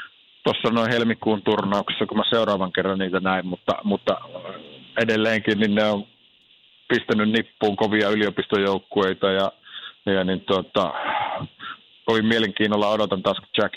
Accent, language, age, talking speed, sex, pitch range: native, Finnish, 50-69, 130 wpm, male, 95-115 Hz